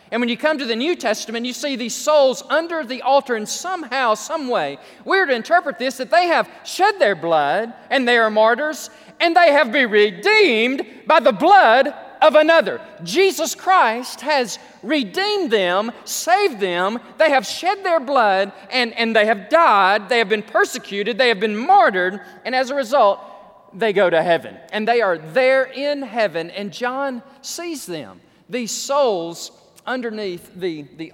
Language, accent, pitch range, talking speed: English, American, 185-275 Hz, 175 wpm